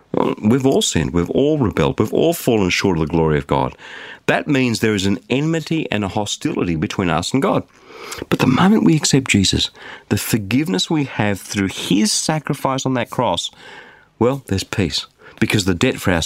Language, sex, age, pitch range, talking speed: English, male, 50-69, 95-155 Hz, 190 wpm